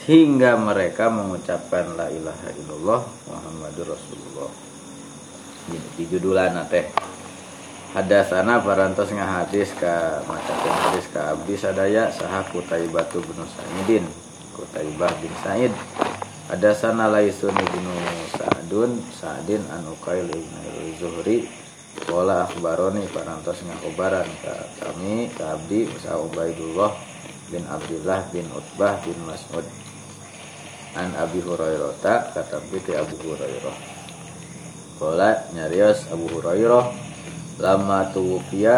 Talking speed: 110 wpm